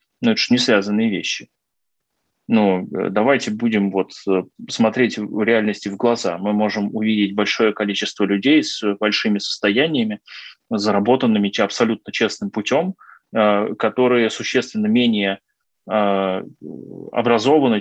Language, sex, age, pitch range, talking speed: Russian, male, 20-39, 105-125 Hz, 110 wpm